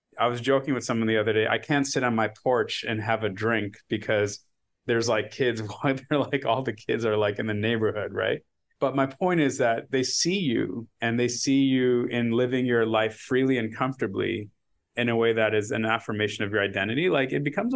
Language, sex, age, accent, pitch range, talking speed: English, male, 30-49, American, 110-140 Hz, 220 wpm